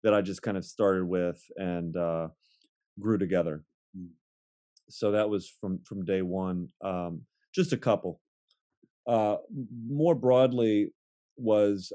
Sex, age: male, 30-49